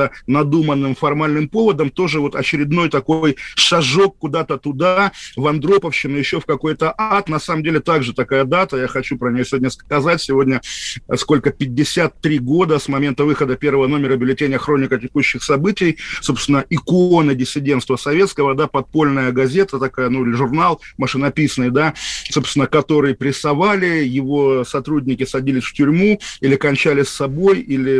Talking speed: 140 wpm